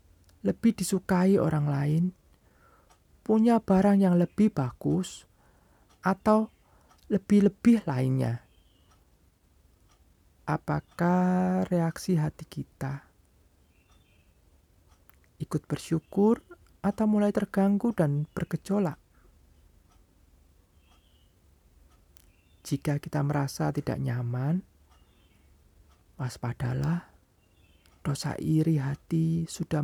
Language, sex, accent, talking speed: Indonesian, male, native, 65 wpm